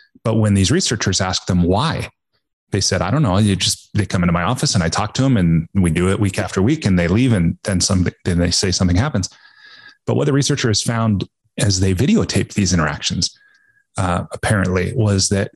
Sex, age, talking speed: male, 30-49, 215 wpm